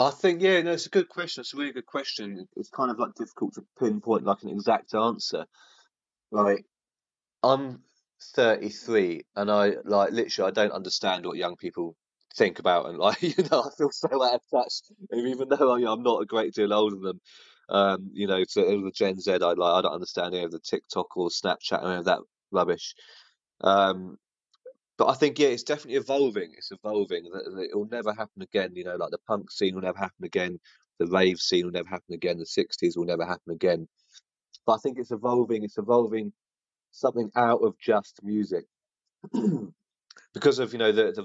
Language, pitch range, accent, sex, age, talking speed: English, 95-125 Hz, British, male, 30-49, 205 wpm